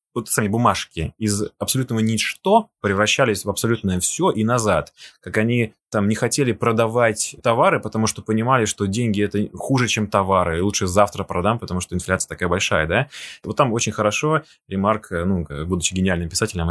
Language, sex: Russian, male